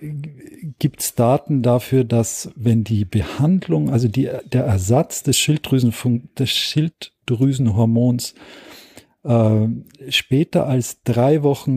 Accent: German